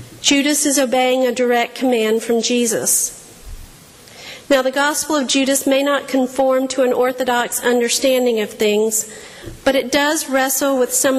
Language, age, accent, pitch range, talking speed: English, 50-69, American, 235-270 Hz, 150 wpm